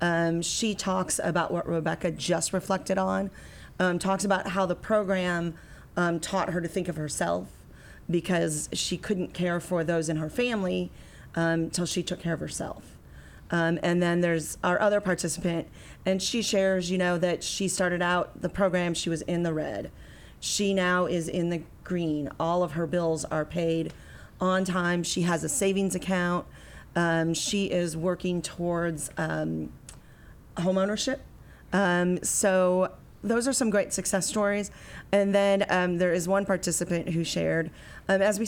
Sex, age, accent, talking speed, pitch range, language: female, 40-59, American, 165 wpm, 165-190 Hz, English